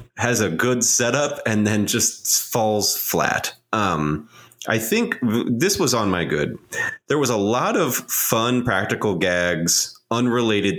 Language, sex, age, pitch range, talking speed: English, male, 30-49, 90-130 Hz, 145 wpm